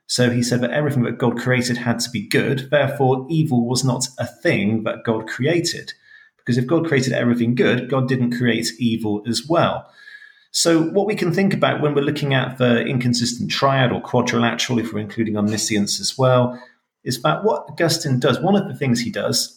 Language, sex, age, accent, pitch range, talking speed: English, male, 40-59, British, 110-145 Hz, 200 wpm